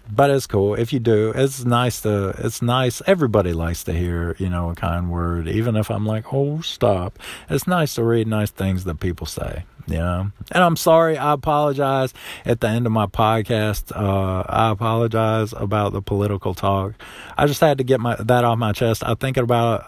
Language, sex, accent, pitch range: English, male, American, 95-115 Hz